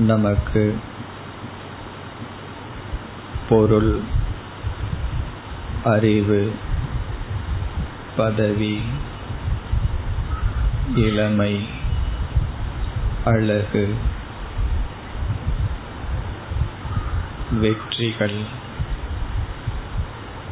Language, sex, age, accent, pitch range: Tamil, male, 50-69, native, 95-110 Hz